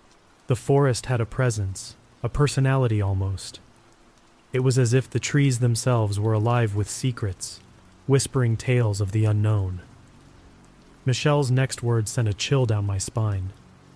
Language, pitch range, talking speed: English, 110-130 Hz, 140 wpm